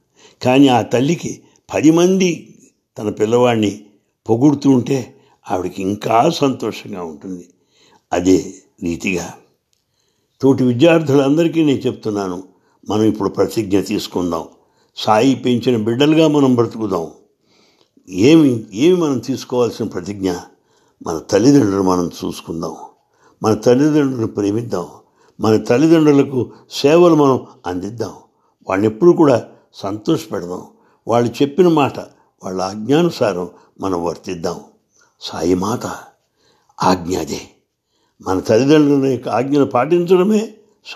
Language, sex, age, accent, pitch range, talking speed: English, male, 60-79, Indian, 100-145 Hz, 95 wpm